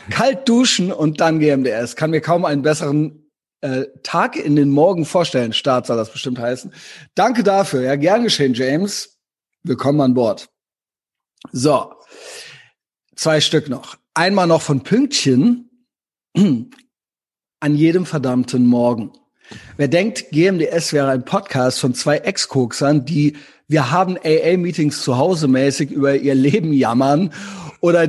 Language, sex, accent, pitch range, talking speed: German, male, German, 145-195 Hz, 135 wpm